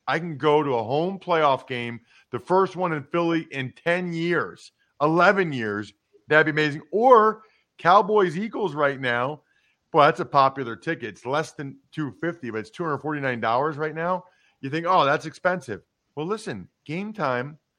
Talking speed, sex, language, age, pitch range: 160 wpm, male, English, 40-59, 145-195 Hz